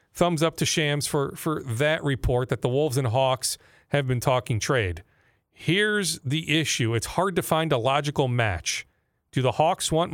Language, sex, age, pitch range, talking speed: English, male, 40-59, 130-175 Hz, 185 wpm